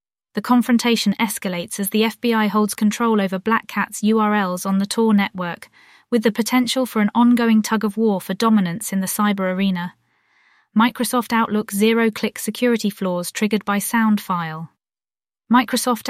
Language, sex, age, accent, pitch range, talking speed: English, female, 20-39, British, 195-230 Hz, 145 wpm